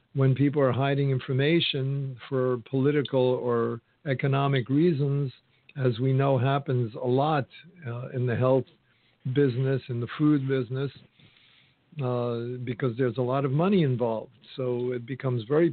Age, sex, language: 50-69, male, English